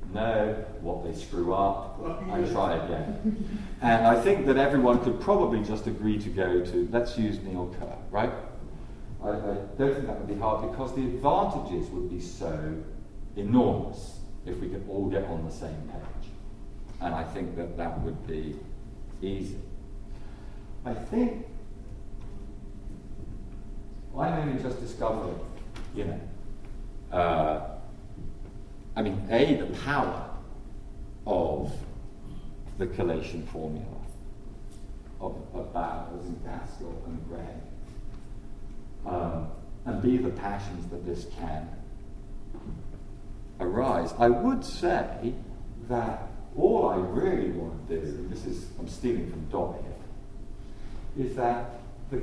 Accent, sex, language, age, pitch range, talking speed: British, male, English, 50-69, 95-120 Hz, 125 wpm